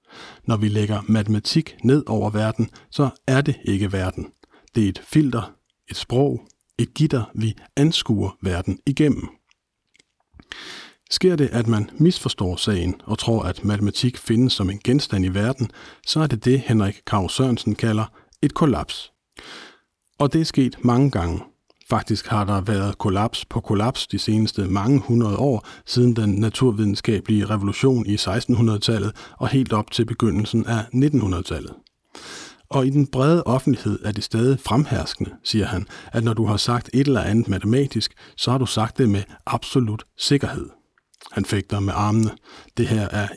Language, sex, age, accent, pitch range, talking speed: Danish, male, 50-69, native, 105-130 Hz, 160 wpm